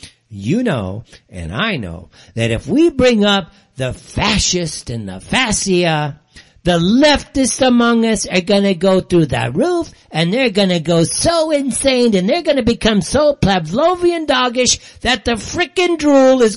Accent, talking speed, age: American, 165 wpm, 60-79